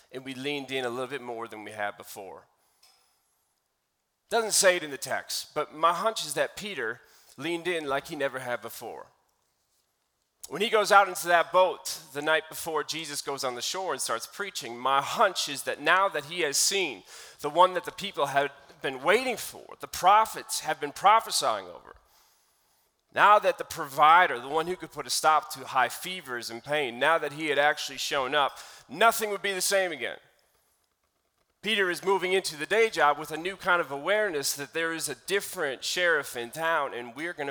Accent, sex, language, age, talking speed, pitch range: American, male, English, 30-49, 200 wpm, 125-175 Hz